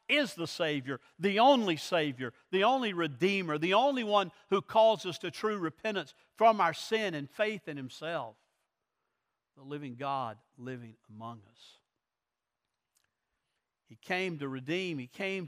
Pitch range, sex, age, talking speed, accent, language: 135-195 Hz, male, 60-79, 145 wpm, American, English